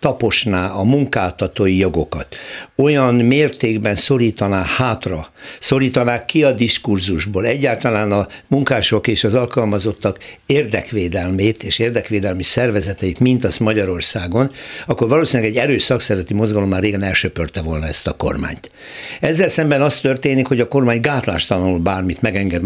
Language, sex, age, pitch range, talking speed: Hungarian, male, 60-79, 95-125 Hz, 125 wpm